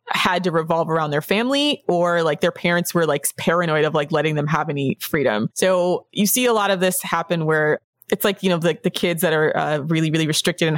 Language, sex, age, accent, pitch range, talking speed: English, female, 20-39, American, 160-190 Hz, 245 wpm